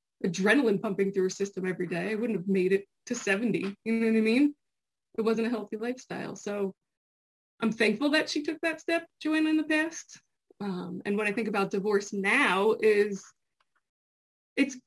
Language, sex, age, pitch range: English, female, 20-39, 205-295 Hz